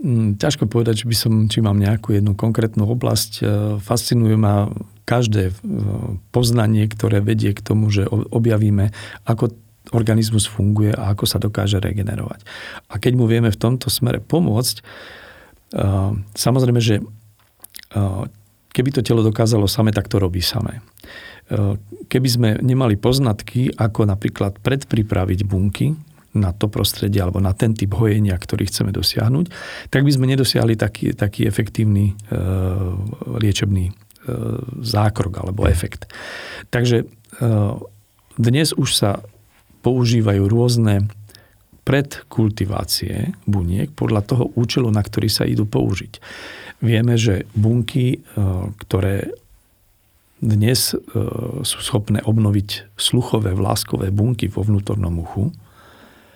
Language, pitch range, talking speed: Slovak, 100-115 Hz, 120 wpm